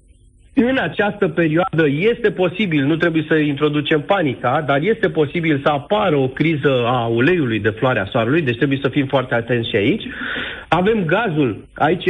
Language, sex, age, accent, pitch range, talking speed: Romanian, male, 40-59, native, 125-150 Hz, 165 wpm